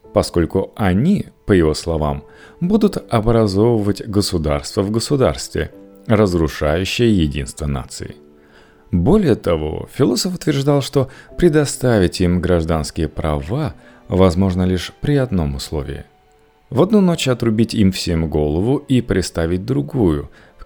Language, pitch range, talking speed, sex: Russian, 75-125 Hz, 110 wpm, male